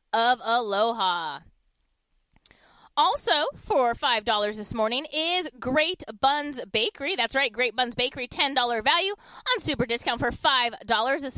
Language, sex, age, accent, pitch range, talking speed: English, female, 20-39, American, 230-315 Hz, 125 wpm